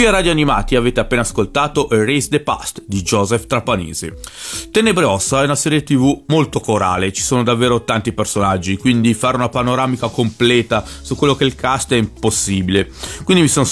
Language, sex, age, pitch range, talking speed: Italian, male, 30-49, 105-135 Hz, 180 wpm